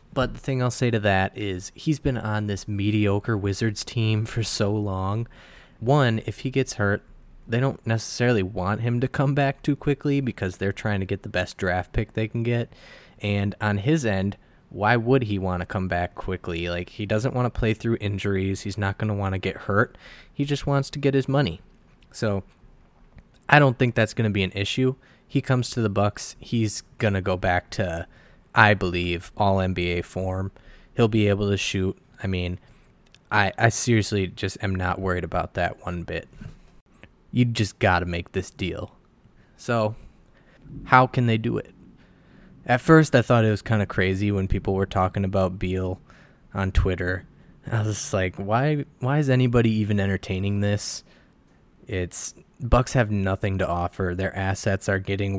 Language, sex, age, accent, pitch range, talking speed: English, male, 20-39, American, 95-120 Hz, 190 wpm